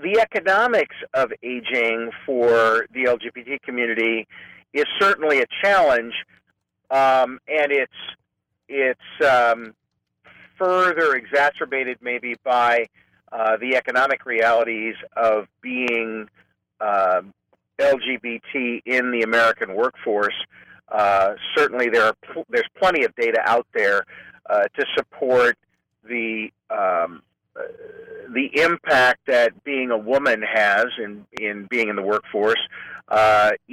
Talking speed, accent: 110 wpm, American